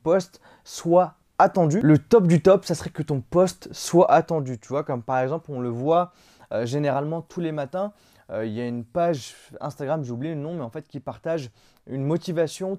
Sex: male